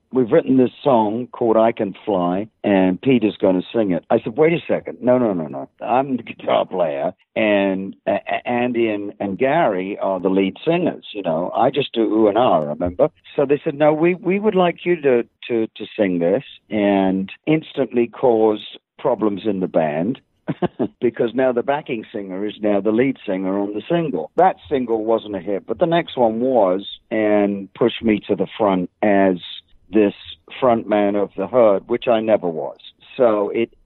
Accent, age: British, 50-69